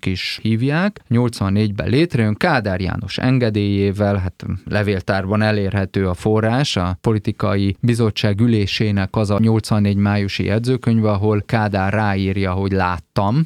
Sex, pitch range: male, 100-120 Hz